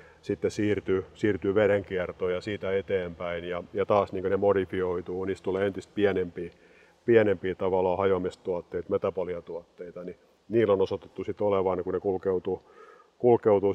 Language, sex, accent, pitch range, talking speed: Finnish, male, native, 90-105 Hz, 135 wpm